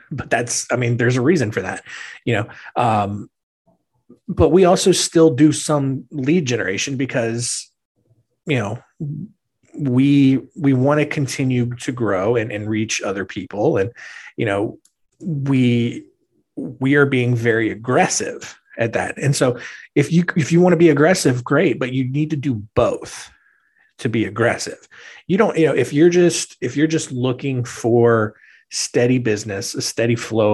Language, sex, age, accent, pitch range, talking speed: English, male, 30-49, American, 115-155 Hz, 165 wpm